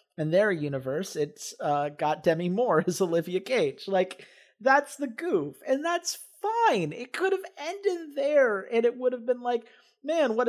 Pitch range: 170-265 Hz